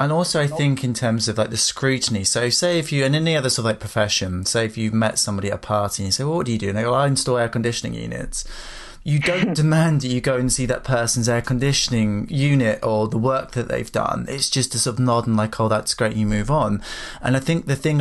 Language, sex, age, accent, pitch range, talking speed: English, male, 20-39, British, 115-140 Hz, 275 wpm